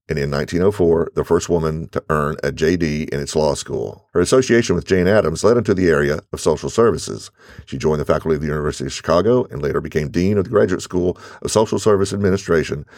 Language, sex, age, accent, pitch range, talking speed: English, male, 50-69, American, 80-105 Hz, 215 wpm